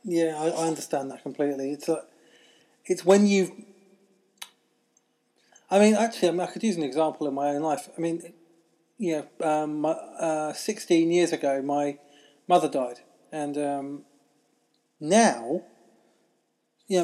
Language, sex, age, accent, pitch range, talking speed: English, male, 20-39, British, 150-180 Hz, 150 wpm